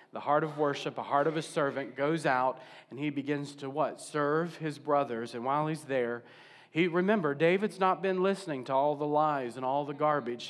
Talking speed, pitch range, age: 210 wpm, 135-165 Hz, 40-59